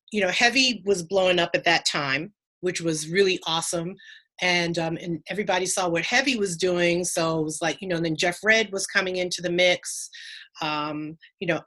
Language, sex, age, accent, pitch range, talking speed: English, female, 30-49, American, 170-210 Hz, 205 wpm